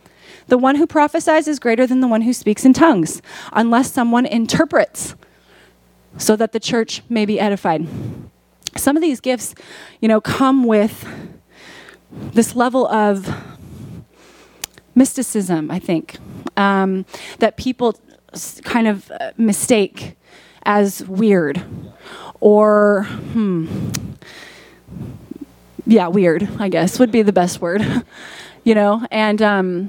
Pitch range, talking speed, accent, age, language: 190-230 Hz, 120 wpm, American, 30-49, English